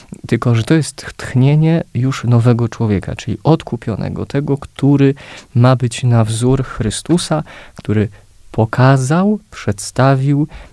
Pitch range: 100-125 Hz